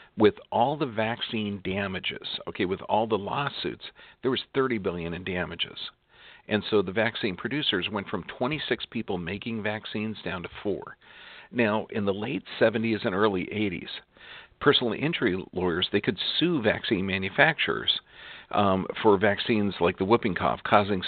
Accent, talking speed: American, 155 wpm